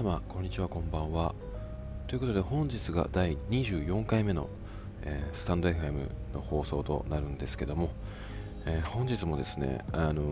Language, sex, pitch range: Japanese, male, 85-105 Hz